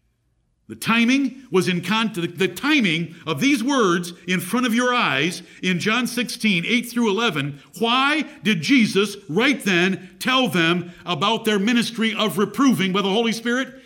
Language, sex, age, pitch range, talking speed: English, male, 50-69, 190-245 Hz, 155 wpm